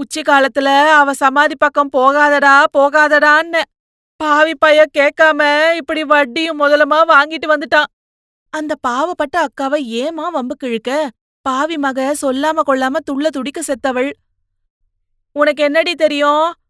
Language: Tamil